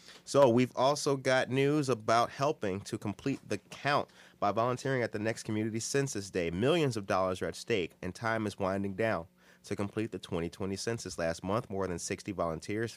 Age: 30-49